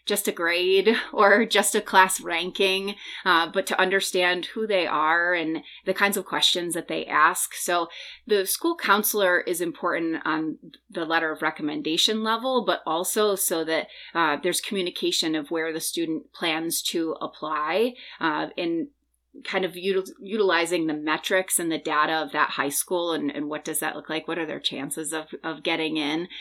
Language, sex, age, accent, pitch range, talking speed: English, female, 30-49, American, 160-200 Hz, 180 wpm